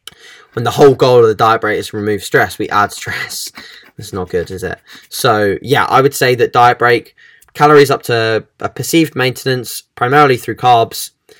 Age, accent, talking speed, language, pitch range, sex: 10-29, British, 195 wpm, English, 110-140 Hz, male